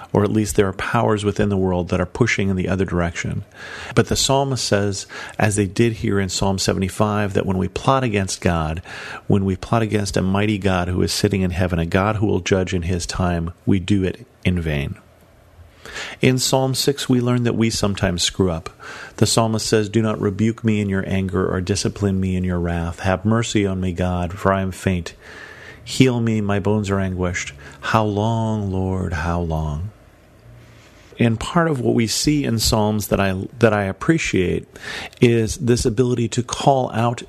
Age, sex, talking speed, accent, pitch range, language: 40-59, male, 200 wpm, American, 95-115 Hz, English